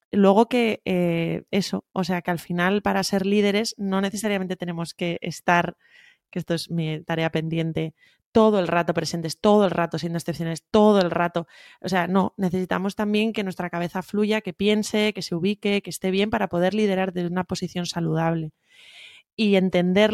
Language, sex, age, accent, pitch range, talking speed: Spanish, female, 20-39, Spanish, 175-205 Hz, 180 wpm